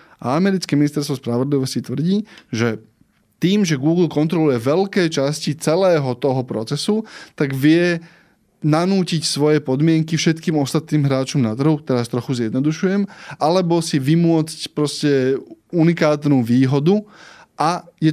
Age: 20-39